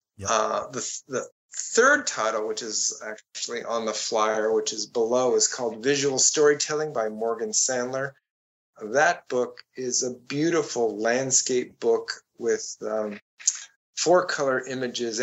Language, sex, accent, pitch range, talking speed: English, male, American, 110-155 Hz, 135 wpm